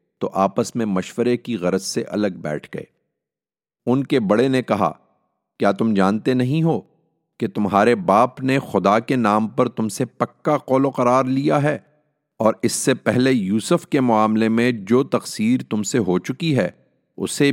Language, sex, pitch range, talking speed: English, male, 90-120 Hz, 180 wpm